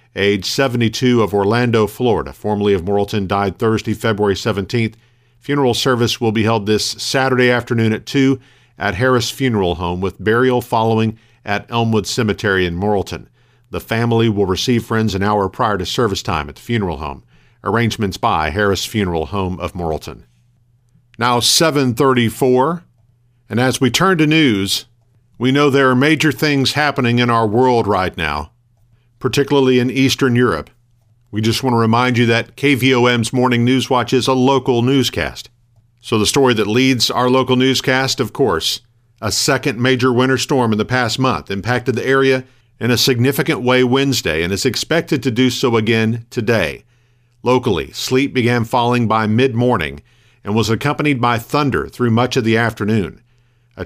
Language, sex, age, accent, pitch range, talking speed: English, male, 50-69, American, 110-130 Hz, 165 wpm